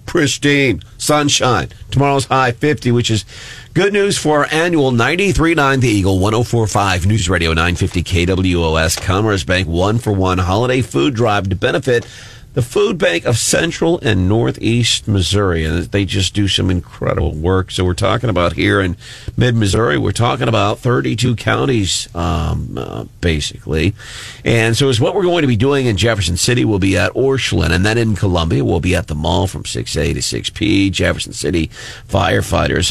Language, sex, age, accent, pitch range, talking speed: English, male, 50-69, American, 85-120 Hz, 170 wpm